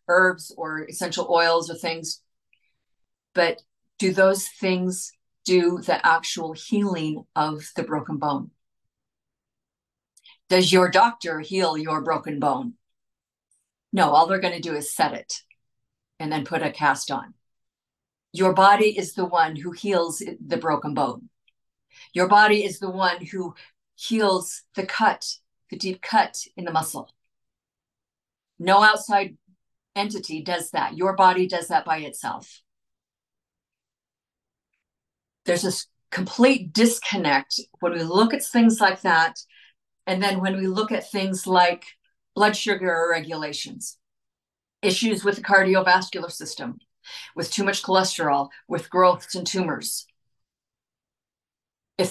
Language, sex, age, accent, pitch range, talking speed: English, female, 50-69, American, 165-200 Hz, 130 wpm